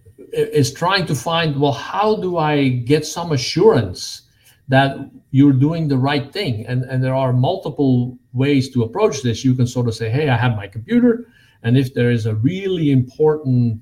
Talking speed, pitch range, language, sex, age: 185 wpm, 120-150 Hz, English, male, 50-69